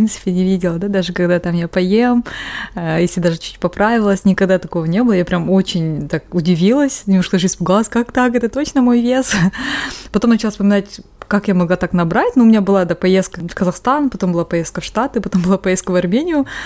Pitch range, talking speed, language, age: 175-215 Hz, 215 wpm, Russian, 20-39